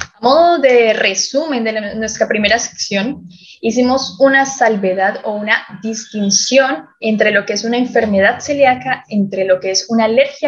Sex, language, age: female, Romanian, 10-29